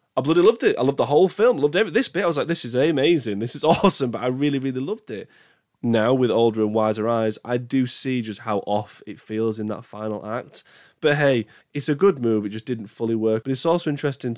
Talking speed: 255 wpm